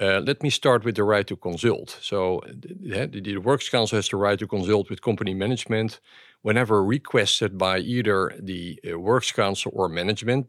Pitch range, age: 95-115 Hz, 50-69